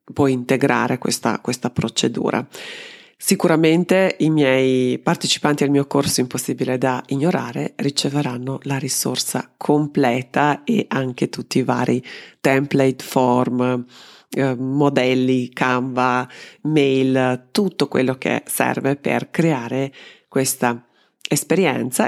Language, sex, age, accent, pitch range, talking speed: Italian, female, 40-59, native, 130-160 Hz, 105 wpm